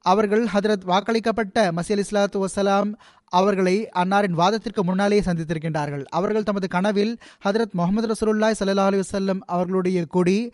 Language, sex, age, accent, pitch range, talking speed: Tamil, male, 20-39, native, 170-200 Hz, 120 wpm